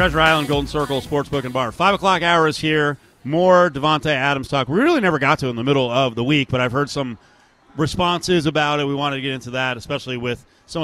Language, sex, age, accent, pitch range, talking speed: English, male, 40-59, American, 110-140 Hz, 235 wpm